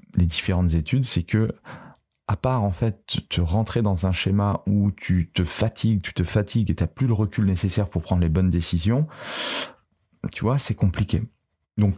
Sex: male